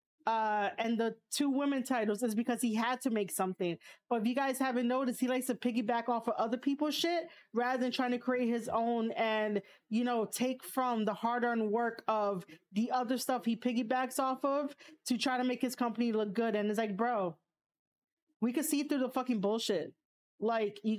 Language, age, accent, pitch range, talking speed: English, 30-49, American, 220-260 Hz, 205 wpm